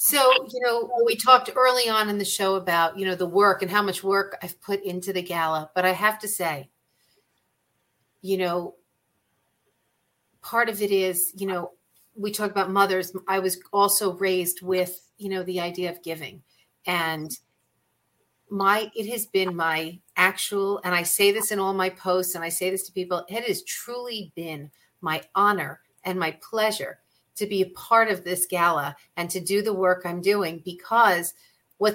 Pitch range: 180-205 Hz